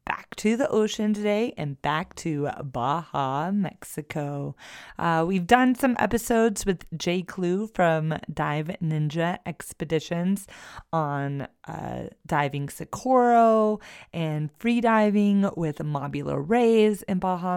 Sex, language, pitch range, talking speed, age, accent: female, English, 165-215 Hz, 115 wpm, 30-49, American